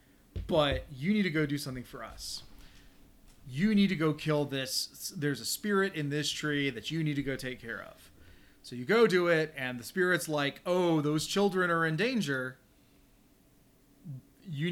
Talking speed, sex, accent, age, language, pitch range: 185 wpm, male, American, 30-49, English, 125-160 Hz